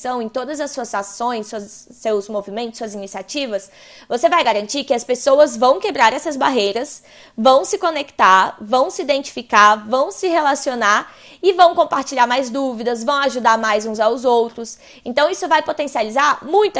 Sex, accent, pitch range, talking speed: female, Brazilian, 220-285 Hz, 155 wpm